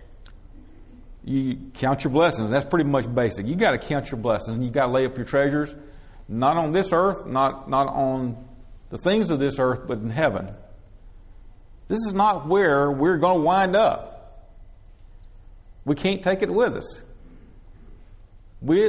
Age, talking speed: 50-69, 165 wpm